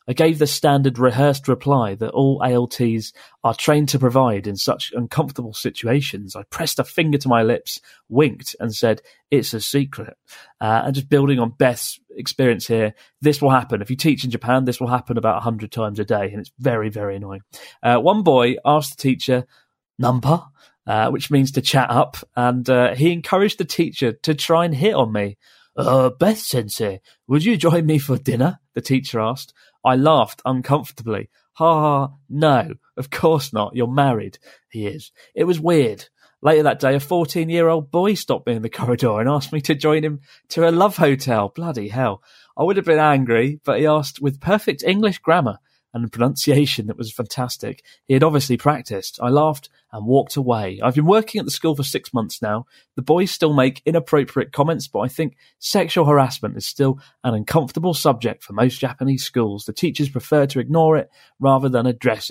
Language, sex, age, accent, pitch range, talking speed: English, male, 30-49, British, 120-155 Hz, 195 wpm